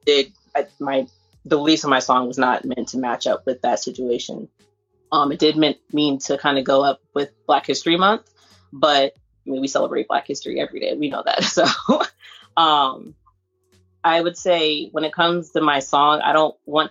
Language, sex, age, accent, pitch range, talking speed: English, female, 20-39, American, 135-155 Hz, 200 wpm